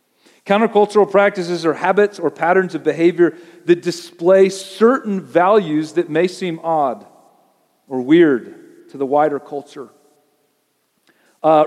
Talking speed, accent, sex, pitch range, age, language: 120 wpm, American, male, 155-200 Hz, 40-59, English